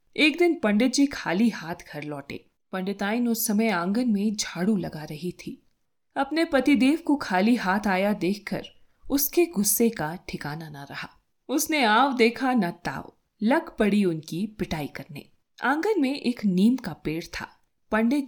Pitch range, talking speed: 175-265 Hz, 160 wpm